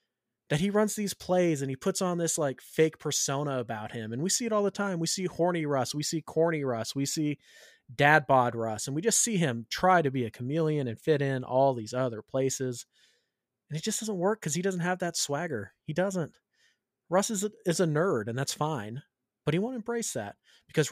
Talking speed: 225 wpm